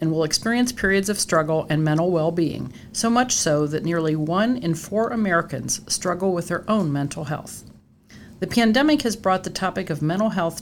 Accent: American